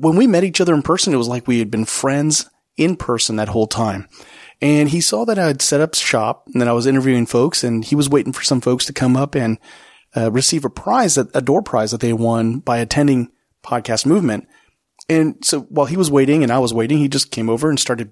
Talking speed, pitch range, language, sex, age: 250 wpm, 115-145 Hz, English, male, 30-49